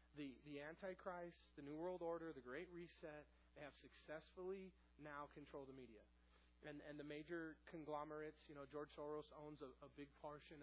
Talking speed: 175 wpm